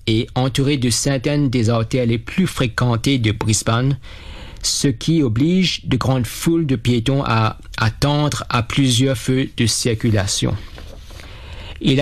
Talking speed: 135 wpm